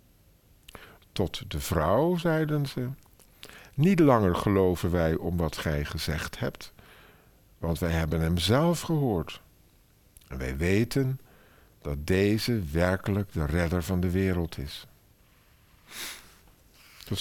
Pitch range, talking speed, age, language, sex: 85-120 Hz, 115 wpm, 50-69, Dutch, male